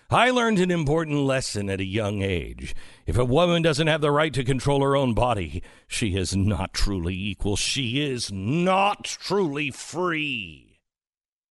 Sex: male